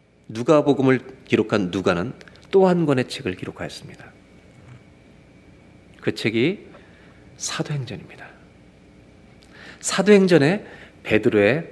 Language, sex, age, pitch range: Korean, male, 40-59, 115-165 Hz